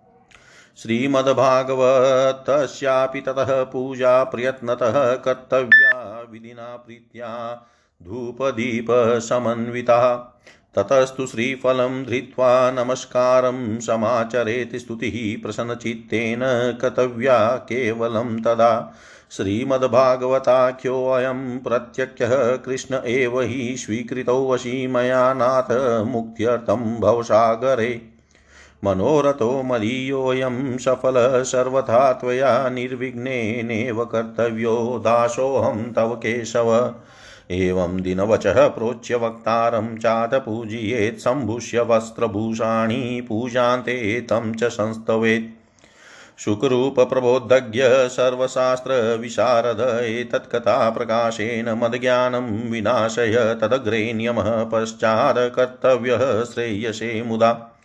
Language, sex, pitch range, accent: Hindi, male, 115-130 Hz, native